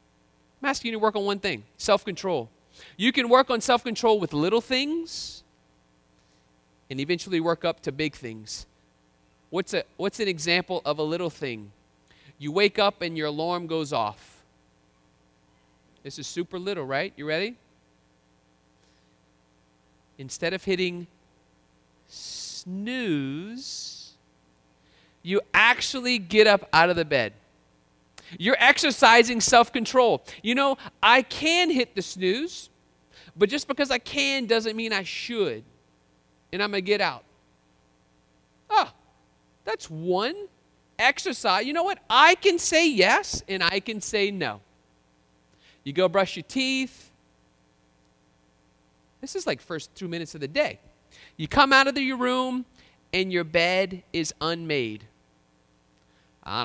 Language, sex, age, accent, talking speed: English, male, 40-59, American, 135 wpm